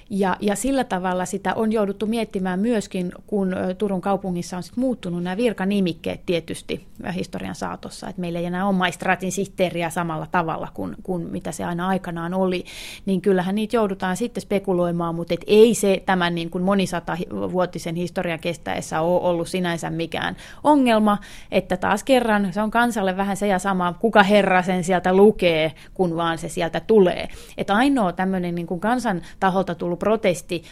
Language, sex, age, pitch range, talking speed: Finnish, female, 30-49, 175-210 Hz, 165 wpm